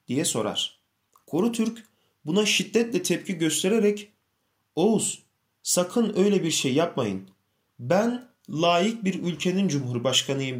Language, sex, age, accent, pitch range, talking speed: Turkish, male, 30-49, native, 155-210 Hz, 110 wpm